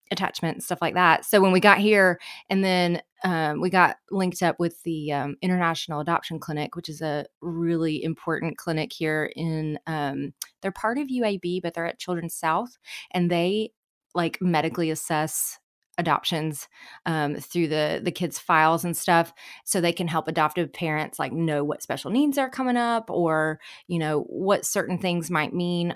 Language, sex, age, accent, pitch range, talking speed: English, female, 20-39, American, 155-195 Hz, 180 wpm